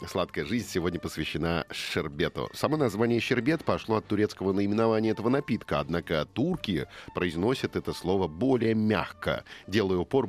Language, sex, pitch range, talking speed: Russian, male, 90-115 Hz, 135 wpm